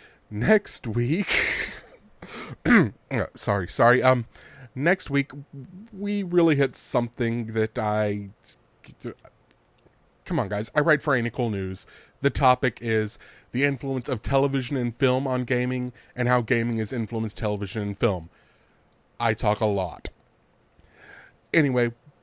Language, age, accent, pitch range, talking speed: English, 30-49, American, 105-135 Hz, 125 wpm